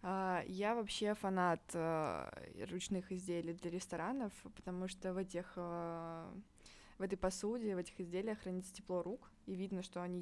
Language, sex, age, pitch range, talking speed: Russian, female, 20-39, 175-200 Hz, 160 wpm